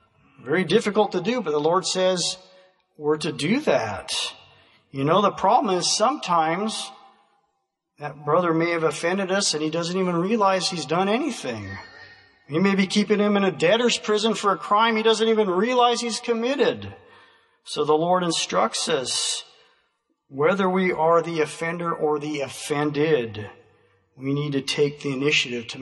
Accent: American